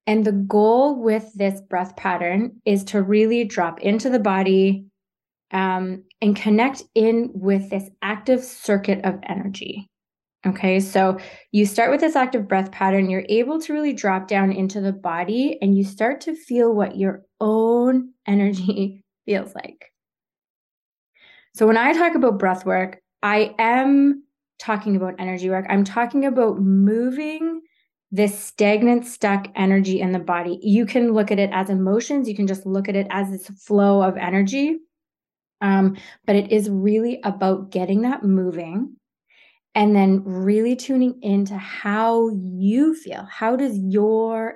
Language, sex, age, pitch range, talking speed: English, female, 20-39, 190-230 Hz, 155 wpm